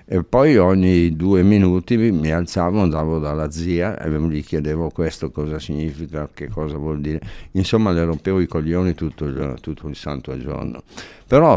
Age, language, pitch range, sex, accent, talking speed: 60-79, Italian, 75-95 Hz, male, native, 170 wpm